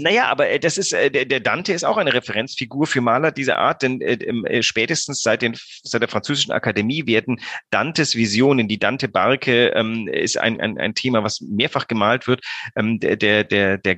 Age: 40-59